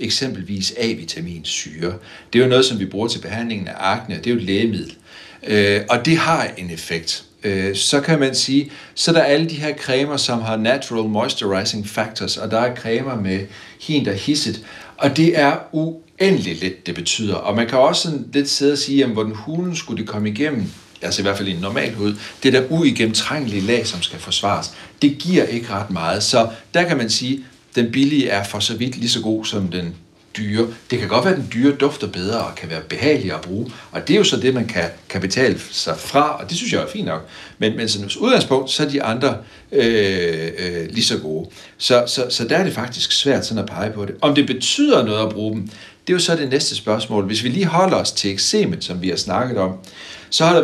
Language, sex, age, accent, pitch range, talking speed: Danish, male, 60-79, native, 100-140 Hz, 235 wpm